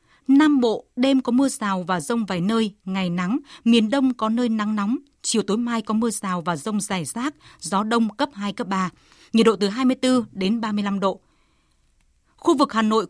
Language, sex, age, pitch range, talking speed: Vietnamese, female, 20-39, 200-255 Hz, 205 wpm